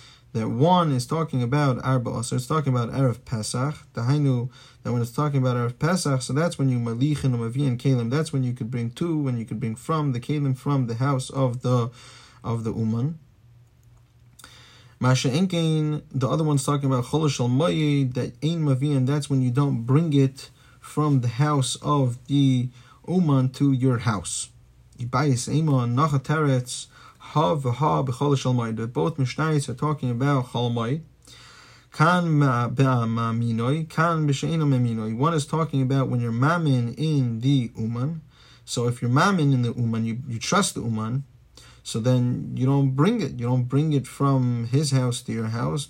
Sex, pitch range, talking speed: male, 120-145 Hz, 160 wpm